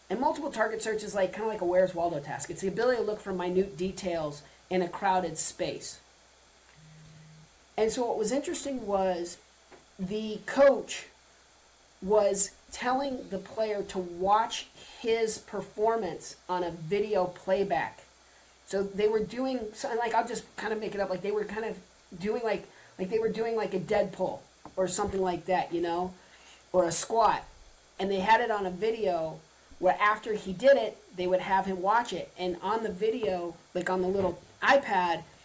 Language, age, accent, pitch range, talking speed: English, 40-59, American, 180-220 Hz, 185 wpm